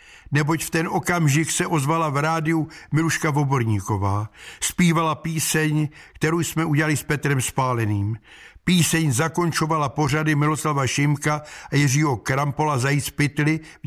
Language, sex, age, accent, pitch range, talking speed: Czech, male, 60-79, native, 135-165 Hz, 120 wpm